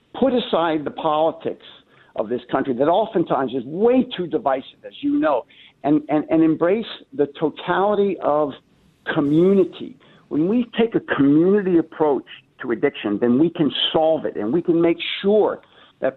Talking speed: 160 wpm